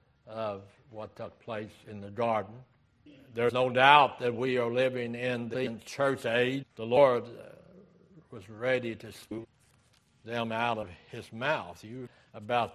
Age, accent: 60-79, American